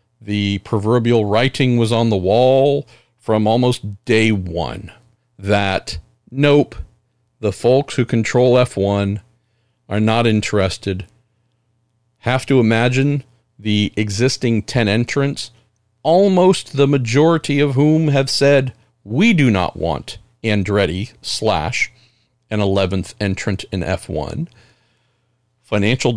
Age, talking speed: 50-69, 110 wpm